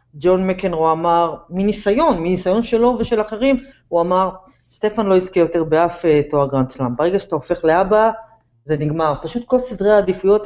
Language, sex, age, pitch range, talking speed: Hebrew, female, 30-49, 155-220 Hz, 160 wpm